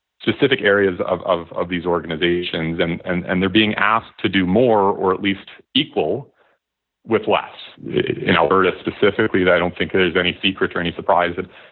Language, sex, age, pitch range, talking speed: English, male, 30-49, 85-100 Hz, 180 wpm